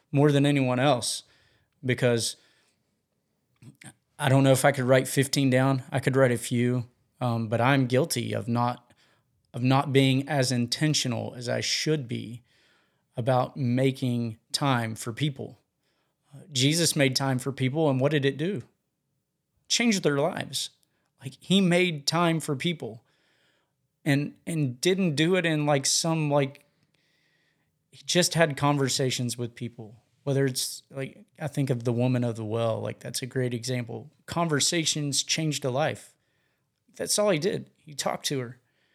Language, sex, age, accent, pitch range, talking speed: English, male, 30-49, American, 125-145 Hz, 155 wpm